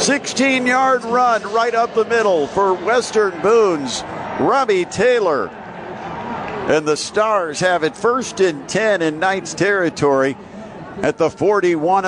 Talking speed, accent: 125 wpm, American